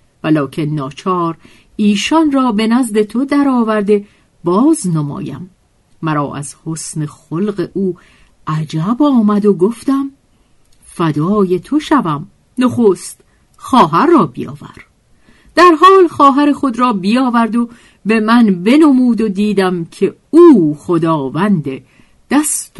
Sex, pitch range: female, 165-245 Hz